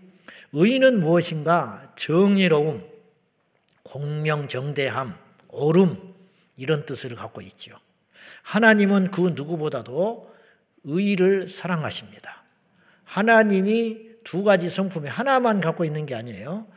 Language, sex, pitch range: Korean, male, 150-195 Hz